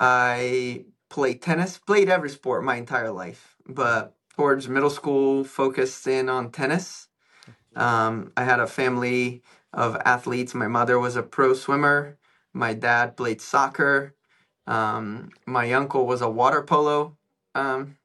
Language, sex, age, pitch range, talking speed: English, male, 20-39, 120-140 Hz, 140 wpm